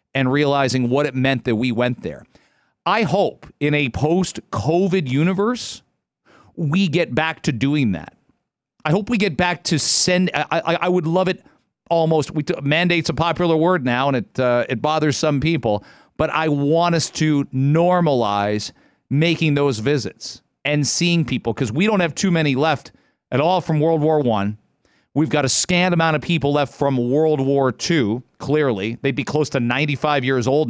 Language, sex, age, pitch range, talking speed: English, male, 40-59, 135-165 Hz, 180 wpm